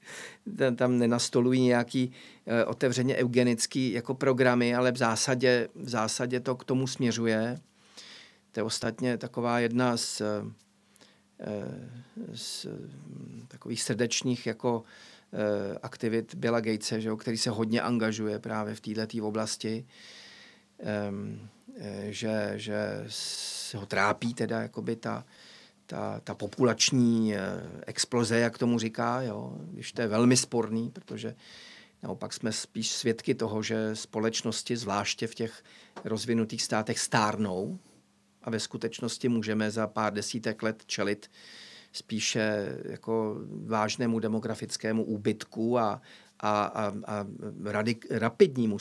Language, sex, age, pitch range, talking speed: Czech, male, 40-59, 110-120 Hz, 115 wpm